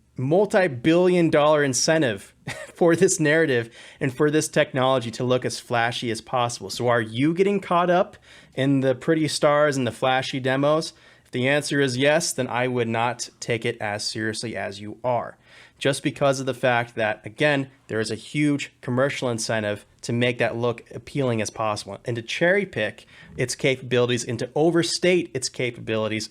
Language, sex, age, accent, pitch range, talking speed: English, male, 30-49, American, 120-155 Hz, 175 wpm